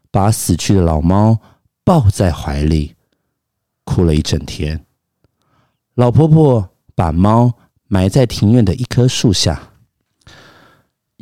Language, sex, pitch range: Chinese, male, 90-120 Hz